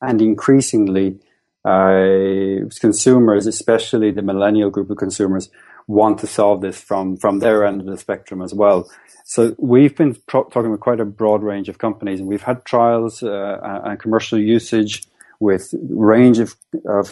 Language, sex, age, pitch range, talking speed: English, male, 30-49, 100-115 Hz, 165 wpm